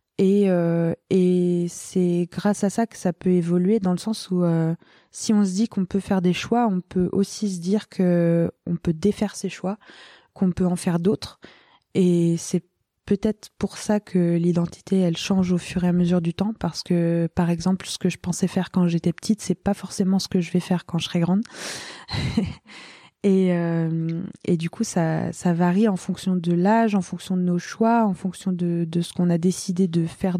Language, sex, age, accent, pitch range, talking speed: French, female, 20-39, French, 175-195 Hz, 215 wpm